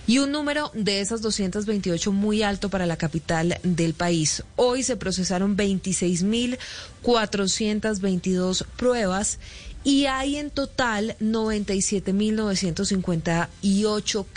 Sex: female